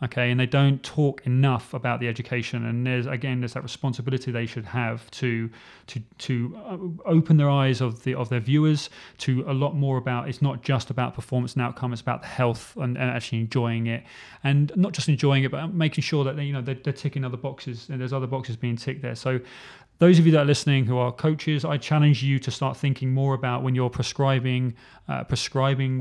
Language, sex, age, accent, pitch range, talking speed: English, male, 30-49, British, 125-145 Hz, 225 wpm